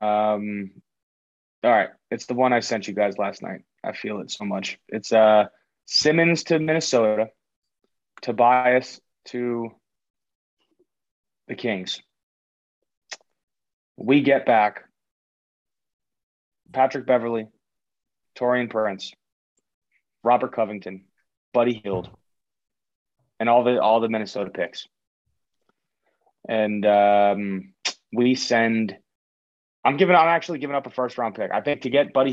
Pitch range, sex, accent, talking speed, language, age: 95-125 Hz, male, American, 115 wpm, English, 30-49